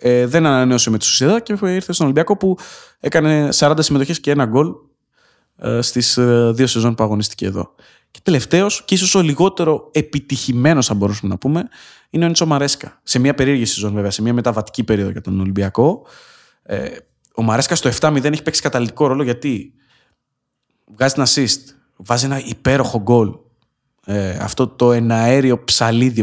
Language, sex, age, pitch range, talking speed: Greek, male, 20-39, 110-150 Hz, 170 wpm